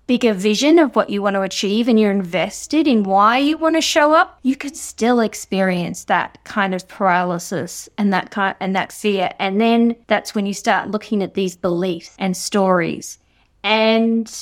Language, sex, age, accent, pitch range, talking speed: English, female, 20-39, Australian, 190-245 Hz, 185 wpm